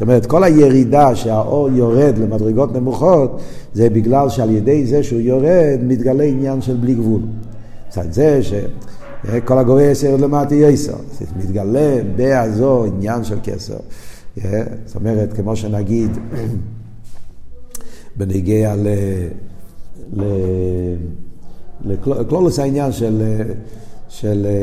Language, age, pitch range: Hebrew, 50-69, 110-140 Hz